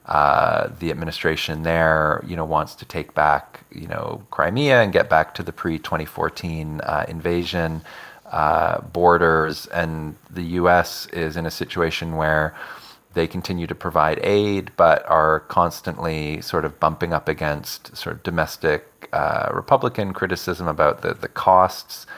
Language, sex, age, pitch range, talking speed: English, male, 30-49, 75-85 Hz, 145 wpm